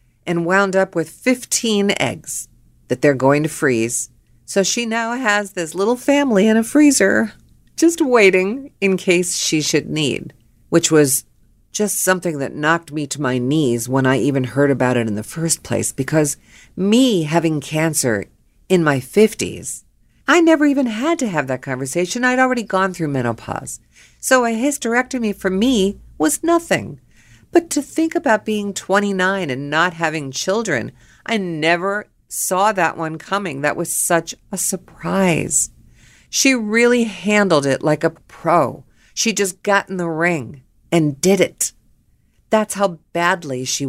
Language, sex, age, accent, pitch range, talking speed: English, female, 50-69, American, 140-215 Hz, 160 wpm